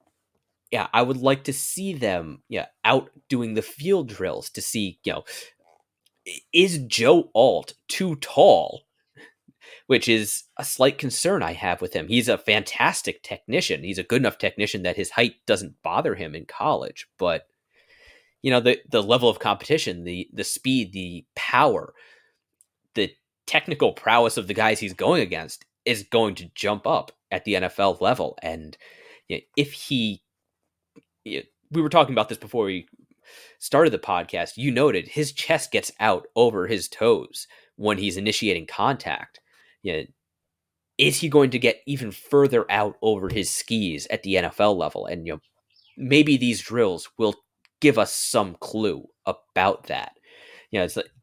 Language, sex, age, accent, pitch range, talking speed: English, male, 30-49, American, 105-155 Hz, 165 wpm